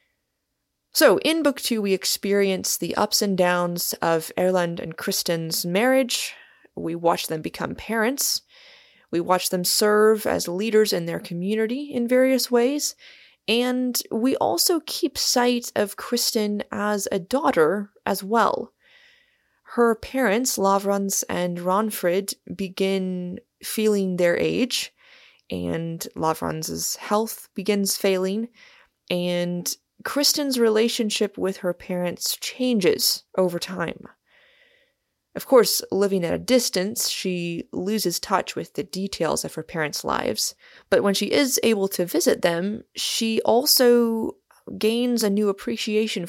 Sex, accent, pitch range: female, American, 185-245 Hz